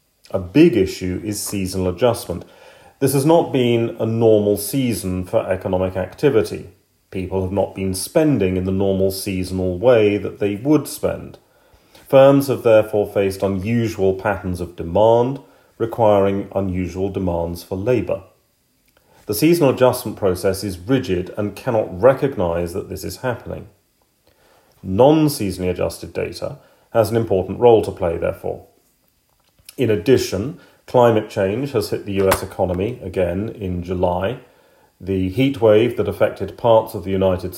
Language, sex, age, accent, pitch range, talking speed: English, male, 40-59, British, 95-120 Hz, 140 wpm